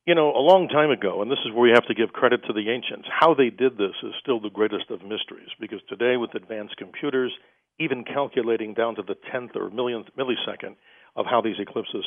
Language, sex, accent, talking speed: English, male, American, 230 wpm